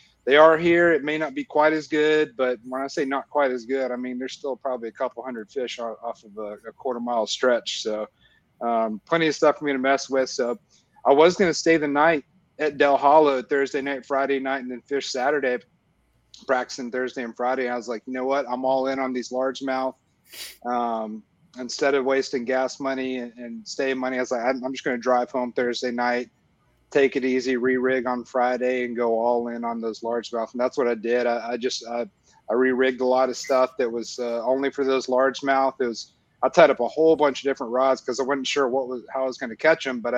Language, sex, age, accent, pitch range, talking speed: English, male, 30-49, American, 120-140 Hz, 235 wpm